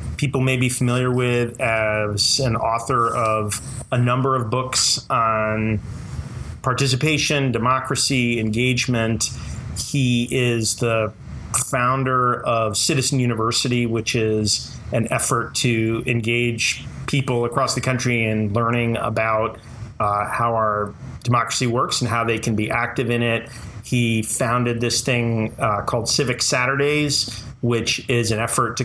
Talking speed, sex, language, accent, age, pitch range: 130 wpm, male, English, American, 30-49, 110-130 Hz